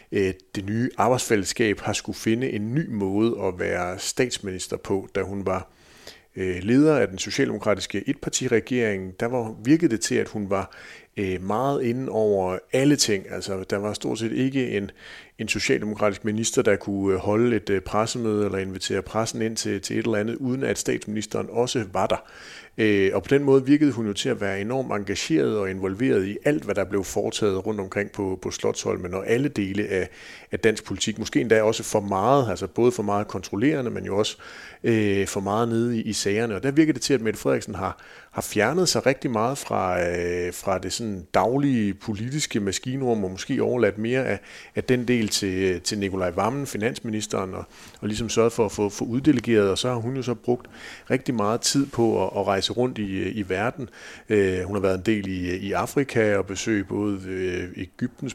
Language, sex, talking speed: Danish, male, 190 wpm